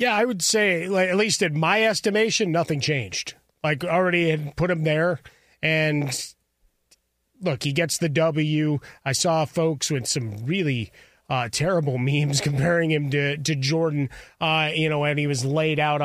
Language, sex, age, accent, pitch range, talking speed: English, male, 30-49, American, 140-165 Hz, 170 wpm